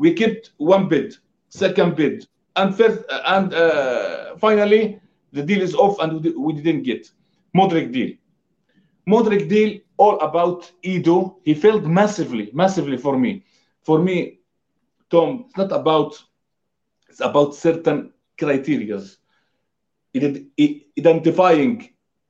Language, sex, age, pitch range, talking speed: English, male, 50-69, 160-215 Hz, 115 wpm